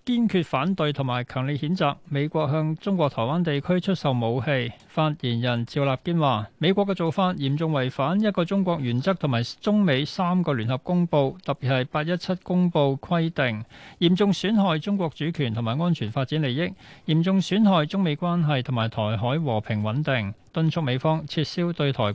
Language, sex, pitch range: Chinese, male, 125-170 Hz